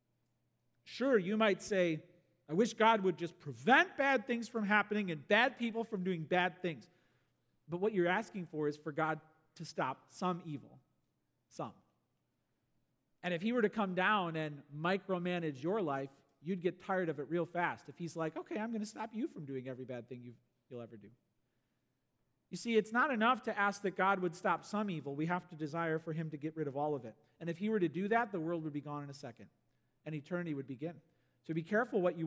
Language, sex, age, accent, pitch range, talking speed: English, male, 40-59, American, 140-185 Hz, 220 wpm